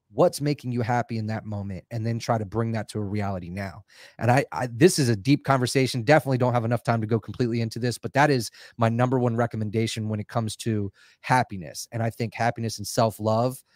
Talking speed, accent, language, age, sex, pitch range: 230 wpm, American, English, 30-49, male, 115-145 Hz